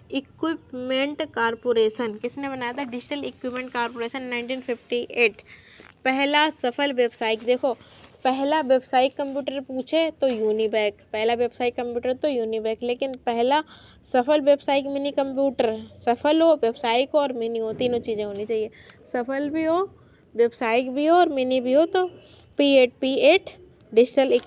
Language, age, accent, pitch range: Hindi, 20-39, native, 240-280 Hz